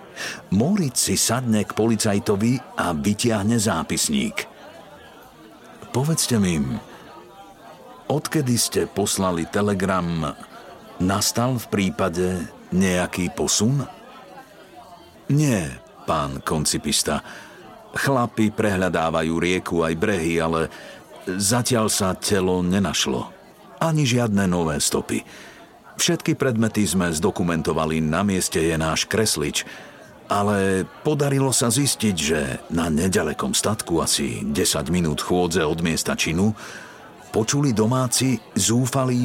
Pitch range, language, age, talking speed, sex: 90-125 Hz, Slovak, 50-69, 95 wpm, male